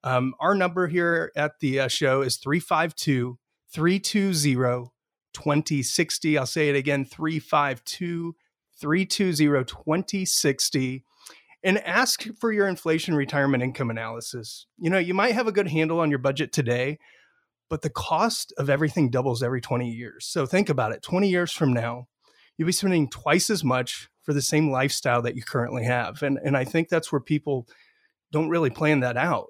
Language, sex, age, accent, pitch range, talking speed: English, male, 30-49, American, 130-165 Hz, 155 wpm